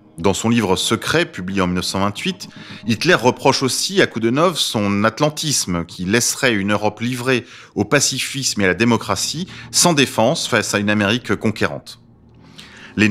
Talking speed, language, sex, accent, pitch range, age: 160 wpm, French, male, French, 100-130 Hz, 30-49